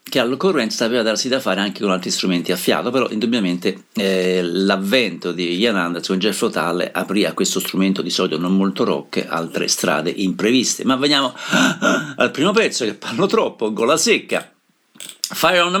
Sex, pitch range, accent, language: male, 95-110 Hz, native, Italian